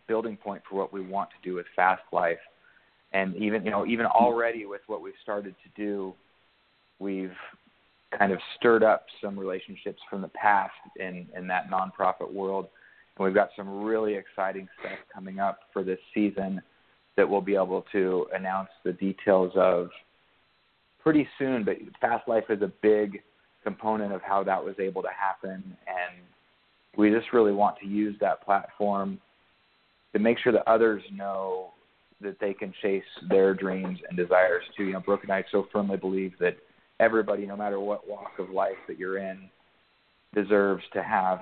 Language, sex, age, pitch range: English, male, 30-49, 95-105 Hz